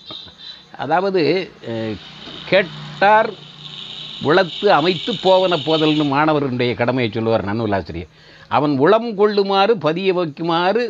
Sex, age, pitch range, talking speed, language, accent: male, 60-79, 120-180 Hz, 85 wpm, Tamil, native